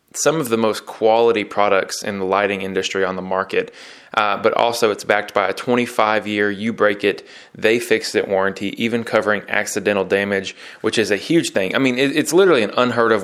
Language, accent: English, American